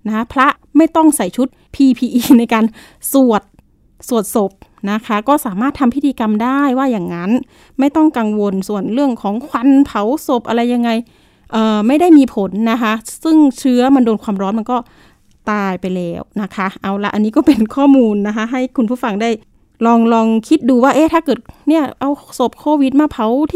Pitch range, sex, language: 220-285 Hz, female, Thai